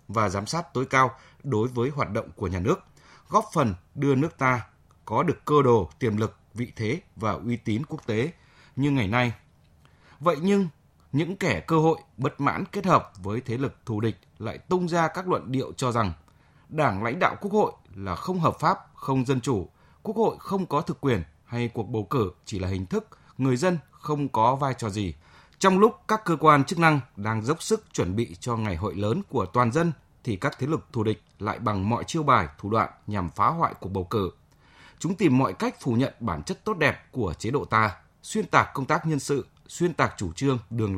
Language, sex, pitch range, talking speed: Vietnamese, male, 105-160 Hz, 225 wpm